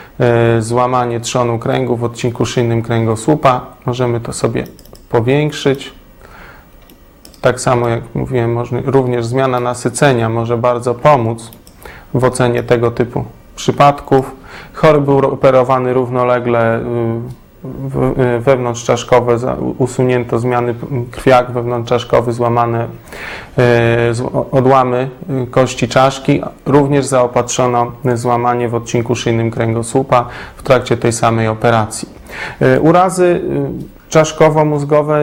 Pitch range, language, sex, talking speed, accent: 120-135 Hz, Polish, male, 90 wpm, native